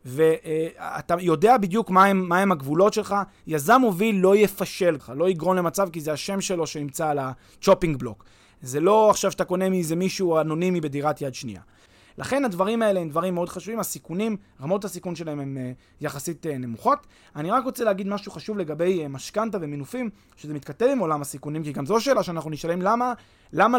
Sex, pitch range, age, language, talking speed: male, 150-200 Hz, 20-39, Hebrew, 190 wpm